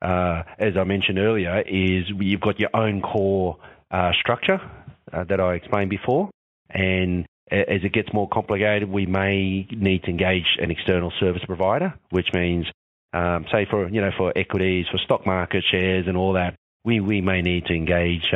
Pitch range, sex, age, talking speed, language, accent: 90-105 Hz, male, 30-49, 185 wpm, English, Australian